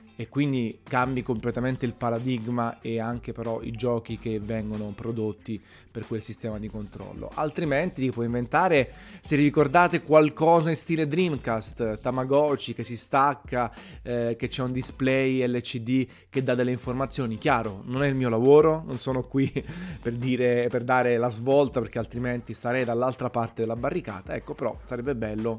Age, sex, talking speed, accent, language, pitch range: 20-39, male, 155 wpm, native, Italian, 110-130 Hz